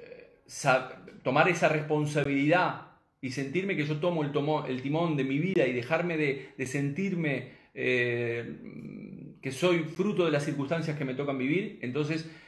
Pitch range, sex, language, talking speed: 130-170 Hz, male, Spanish, 150 wpm